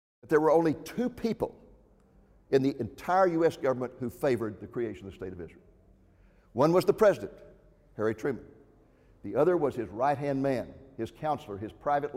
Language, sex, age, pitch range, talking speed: English, male, 60-79, 120-165 Hz, 180 wpm